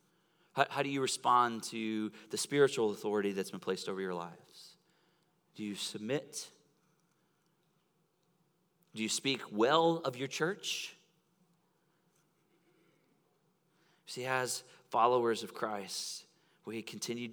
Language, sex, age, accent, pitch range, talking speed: English, male, 30-49, American, 105-170 Hz, 110 wpm